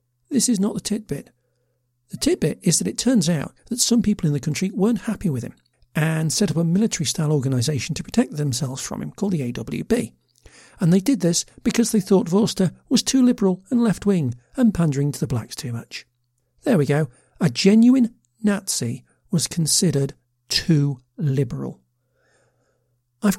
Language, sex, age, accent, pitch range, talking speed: English, male, 50-69, British, 135-205 Hz, 170 wpm